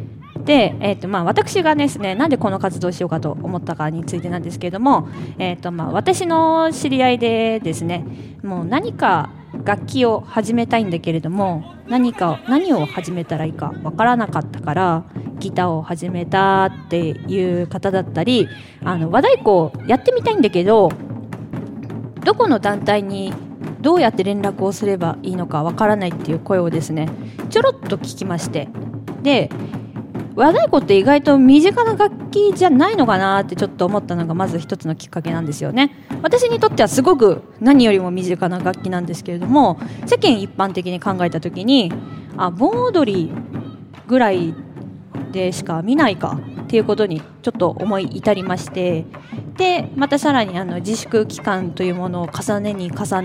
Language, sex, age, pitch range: Japanese, female, 20-39, 170-240 Hz